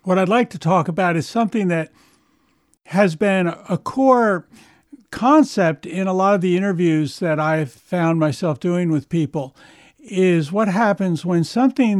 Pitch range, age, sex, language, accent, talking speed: 155-190 Hz, 60-79, male, English, American, 160 wpm